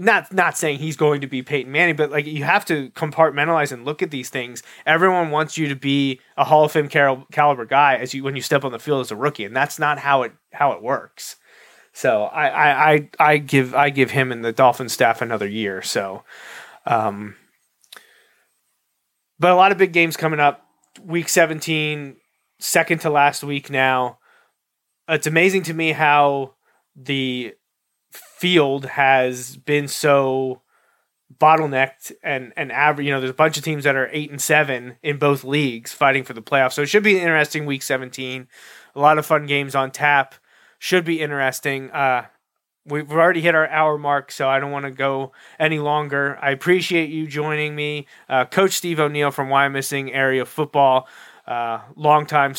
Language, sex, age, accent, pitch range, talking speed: English, male, 30-49, American, 135-155 Hz, 185 wpm